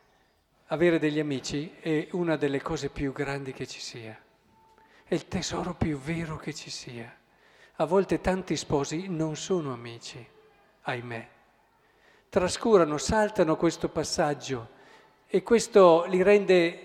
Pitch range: 145-210 Hz